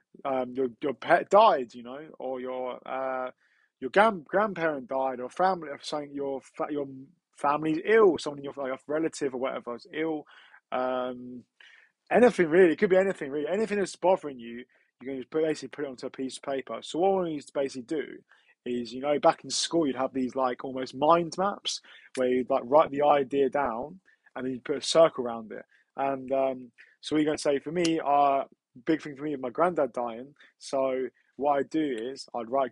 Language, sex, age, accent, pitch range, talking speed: English, male, 20-39, British, 130-155 Hz, 215 wpm